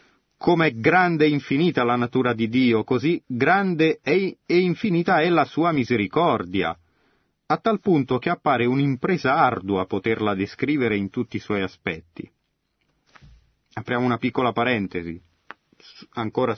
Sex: male